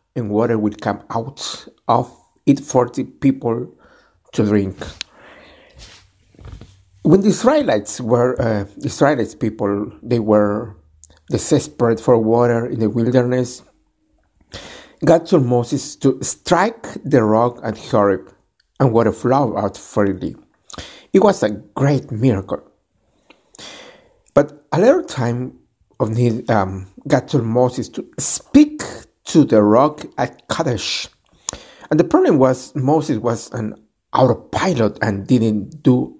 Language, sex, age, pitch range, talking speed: Spanish, male, 60-79, 105-140 Hz, 125 wpm